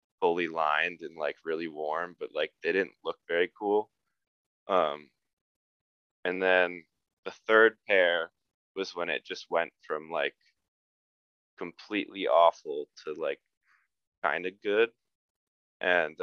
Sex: male